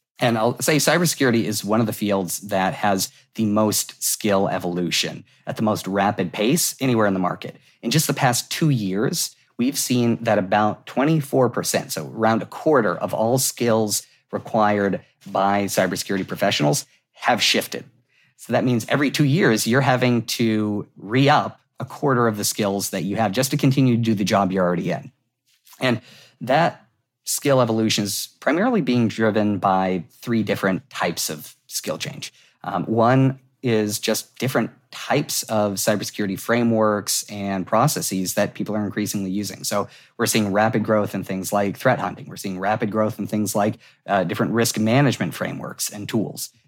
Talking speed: 170 wpm